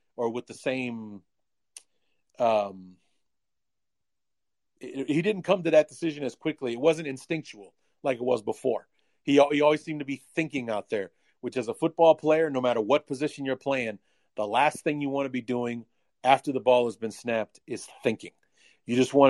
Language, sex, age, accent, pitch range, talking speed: English, male, 40-59, American, 120-150 Hz, 185 wpm